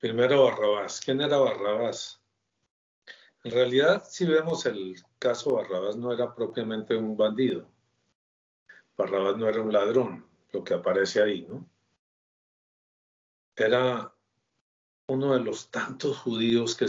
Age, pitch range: 50-69, 100-135 Hz